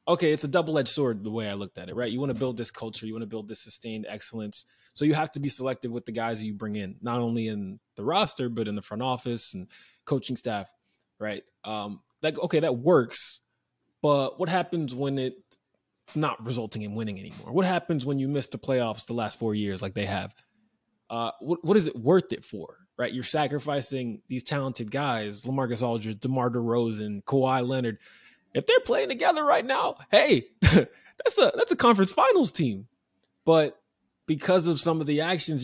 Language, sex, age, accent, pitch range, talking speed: English, male, 20-39, American, 115-150 Hz, 205 wpm